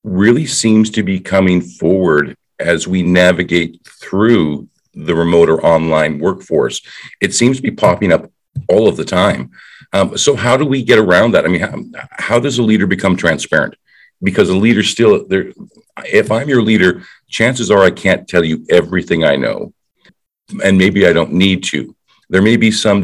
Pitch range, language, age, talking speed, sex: 85-110 Hz, English, 50-69, 180 wpm, male